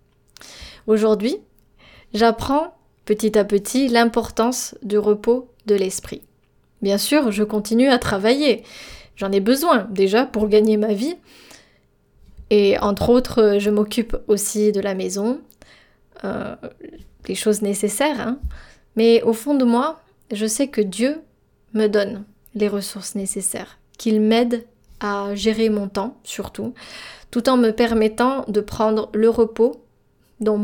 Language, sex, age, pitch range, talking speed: French, female, 20-39, 205-245 Hz, 135 wpm